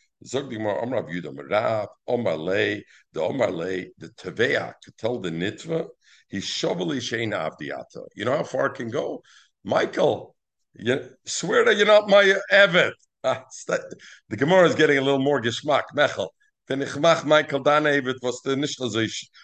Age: 60-79